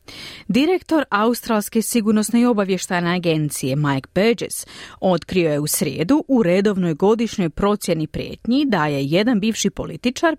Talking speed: 125 wpm